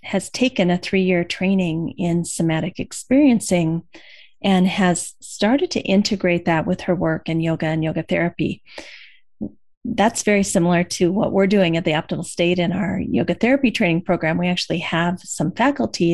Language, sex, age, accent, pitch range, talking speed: English, female, 40-59, American, 175-200 Hz, 165 wpm